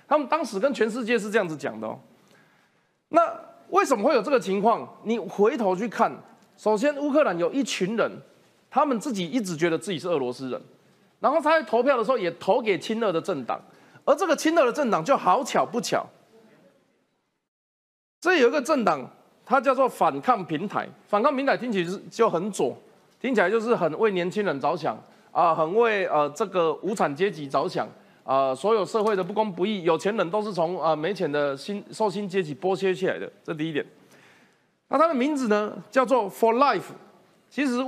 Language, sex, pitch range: Chinese, male, 185-255 Hz